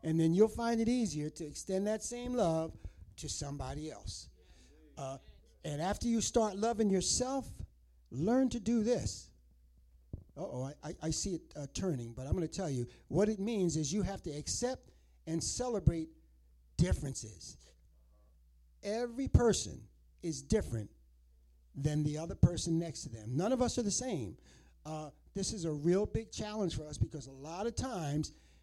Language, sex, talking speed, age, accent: English, male, 170 wpm, 60-79, American